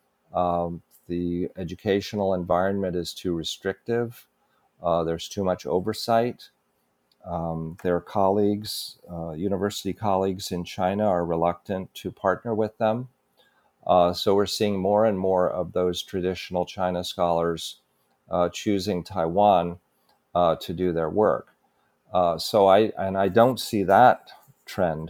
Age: 50-69